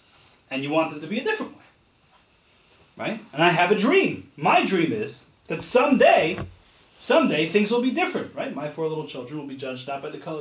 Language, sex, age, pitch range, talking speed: English, male, 30-49, 140-230 Hz, 215 wpm